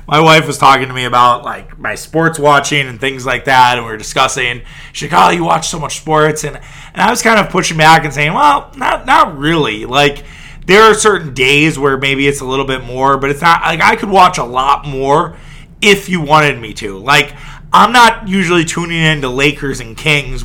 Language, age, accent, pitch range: English, 30-49, American, 130-160 Hz